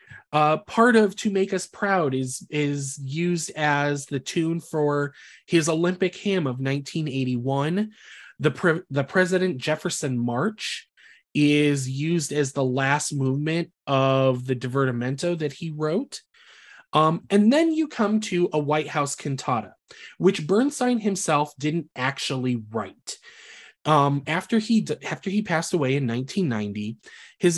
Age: 20-39